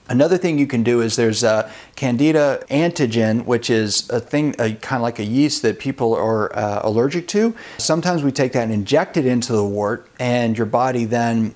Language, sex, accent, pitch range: English, male, American, 110-145 Hz